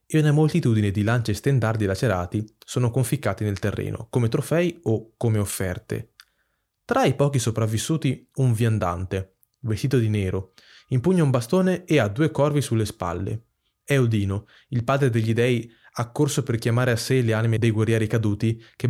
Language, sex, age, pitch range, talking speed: Italian, male, 20-39, 110-130 Hz, 165 wpm